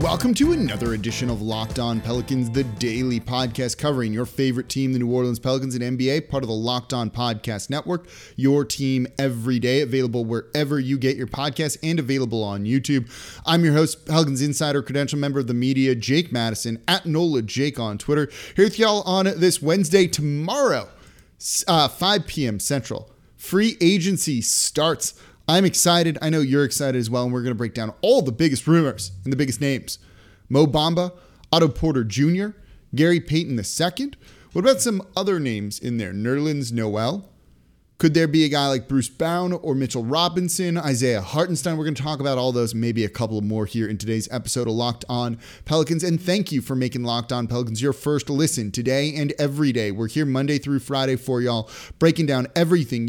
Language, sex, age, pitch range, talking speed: English, male, 30-49, 120-155 Hz, 190 wpm